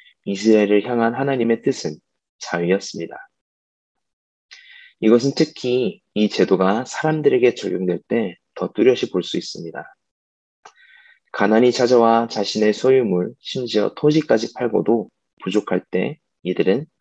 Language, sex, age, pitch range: Korean, male, 20-39, 100-135 Hz